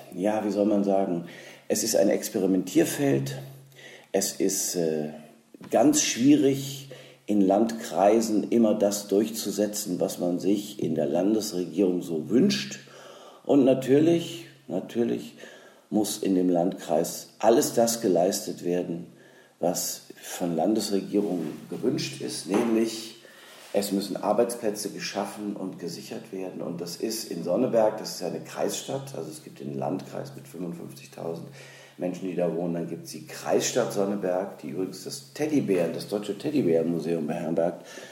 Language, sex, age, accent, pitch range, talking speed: German, male, 50-69, German, 85-110 Hz, 135 wpm